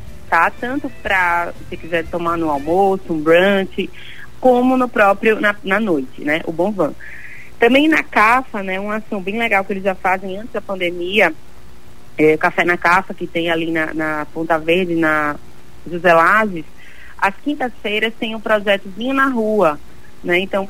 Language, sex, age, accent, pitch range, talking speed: Portuguese, female, 30-49, Brazilian, 175-220 Hz, 175 wpm